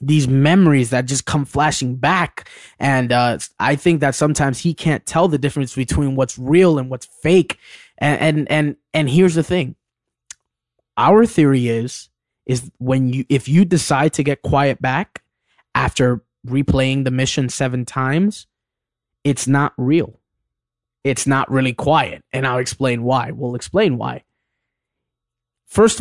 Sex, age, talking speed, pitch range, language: male, 20-39, 150 wpm, 125-155 Hz, English